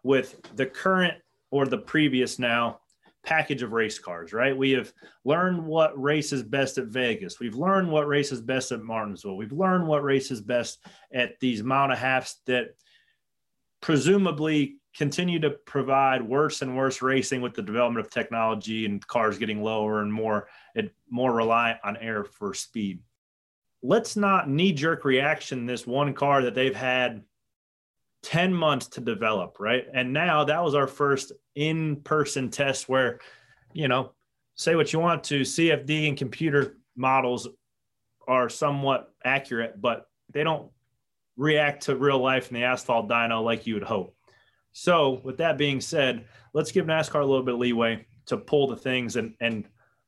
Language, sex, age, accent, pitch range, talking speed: English, male, 30-49, American, 115-150 Hz, 165 wpm